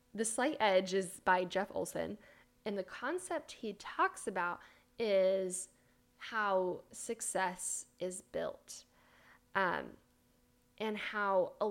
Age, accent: 10-29, American